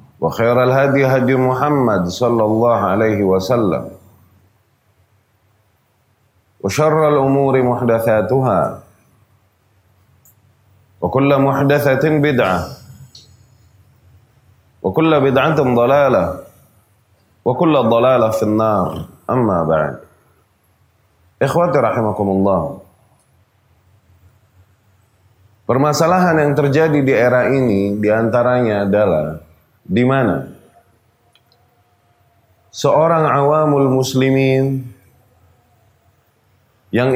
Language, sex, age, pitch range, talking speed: Indonesian, male, 30-49, 105-135 Hz, 70 wpm